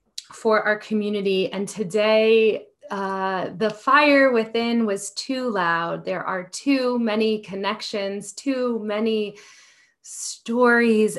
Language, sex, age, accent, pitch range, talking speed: English, female, 30-49, American, 185-230 Hz, 105 wpm